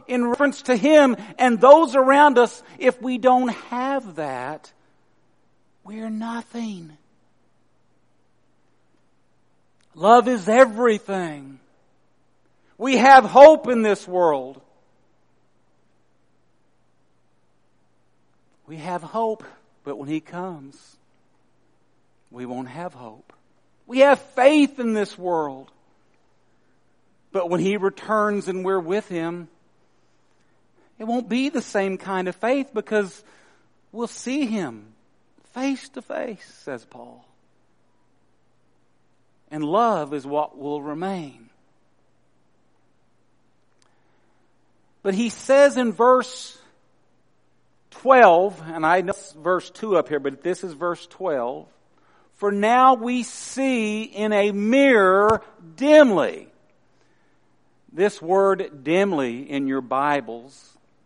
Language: English